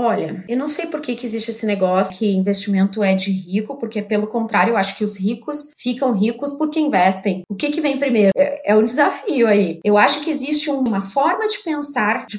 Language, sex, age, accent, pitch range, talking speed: Portuguese, female, 20-39, Brazilian, 205-250 Hz, 230 wpm